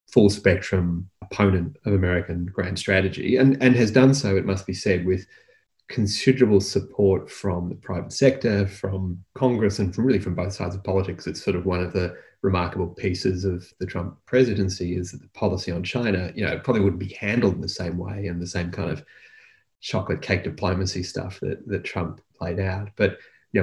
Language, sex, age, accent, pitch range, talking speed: English, male, 30-49, Australian, 90-105 Hz, 195 wpm